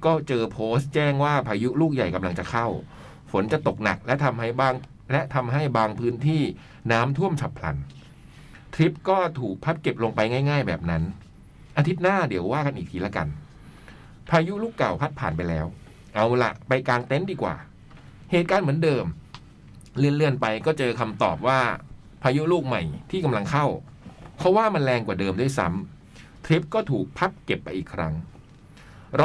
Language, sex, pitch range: Thai, male, 110-160 Hz